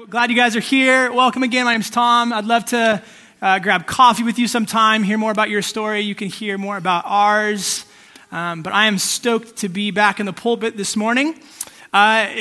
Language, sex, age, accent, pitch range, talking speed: English, male, 20-39, American, 195-235 Hz, 220 wpm